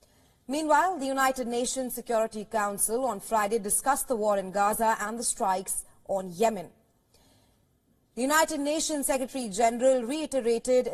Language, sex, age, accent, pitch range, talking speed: English, female, 30-49, Indian, 210-265 Hz, 125 wpm